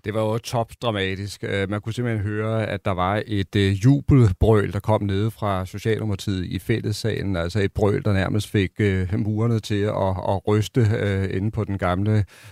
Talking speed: 165 wpm